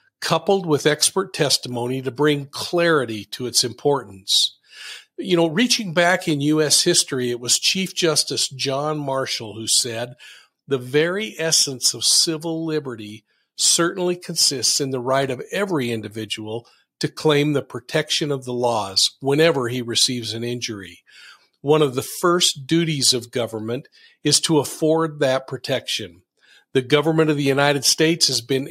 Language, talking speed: English, 150 wpm